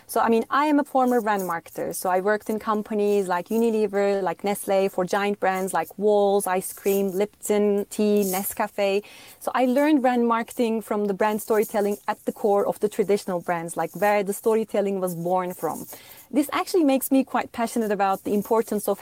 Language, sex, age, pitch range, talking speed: English, female, 30-49, 190-230 Hz, 190 wpm